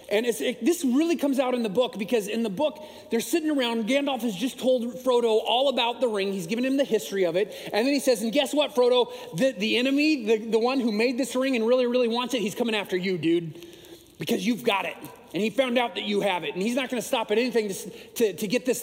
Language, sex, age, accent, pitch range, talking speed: English, male, 30-49, American, 180-265 Hz, 270 wpm